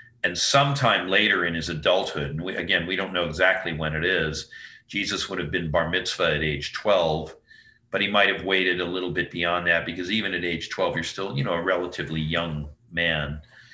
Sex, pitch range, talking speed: male, 80-115 Hz, 210 wpm